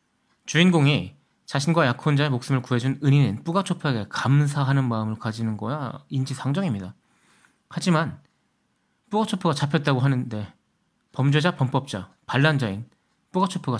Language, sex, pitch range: Korean, male, 120-165 Hz